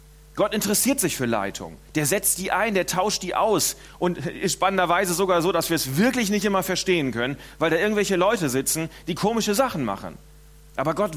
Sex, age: male, 40-59